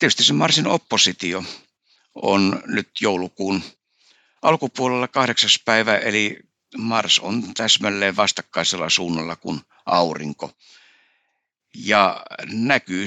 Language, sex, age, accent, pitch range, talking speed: Finnish, male, 60-79, native, 90-110 Hz, 90 wpm